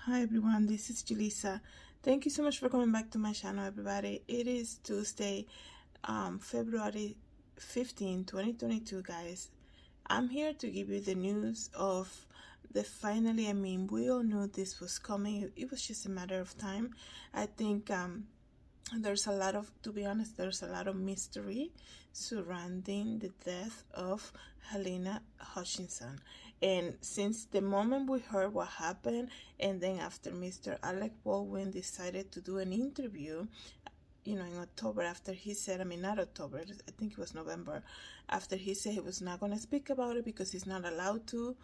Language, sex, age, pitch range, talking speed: English, female, 20-39, 185-225 Hz, 175 wpm